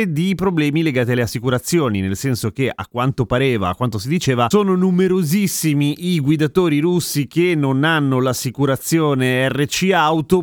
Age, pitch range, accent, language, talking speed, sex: 30-49, 120-160 Hz, native, Italian, 150 wpm, male